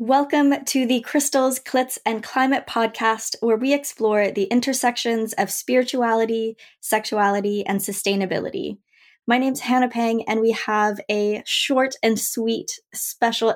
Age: 10-29